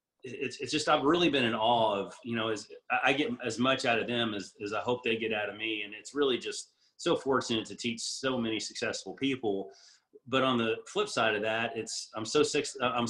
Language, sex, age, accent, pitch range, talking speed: English, male, 30-49, American, 105-130 Hz, 240 wpm